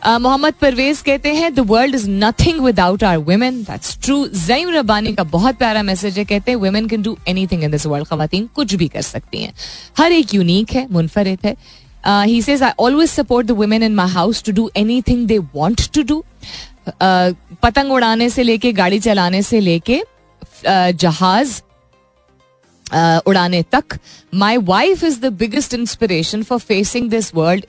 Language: Hindi